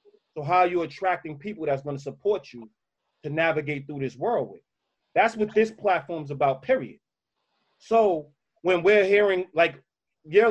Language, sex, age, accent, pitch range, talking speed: English, male, 30-49, American, 155-210 Hz, 160 wpm